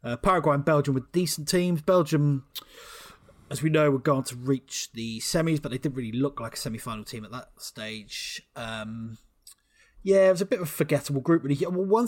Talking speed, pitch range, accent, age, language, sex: 210 wpm, 105-140 Hz, British, 20-39, English, male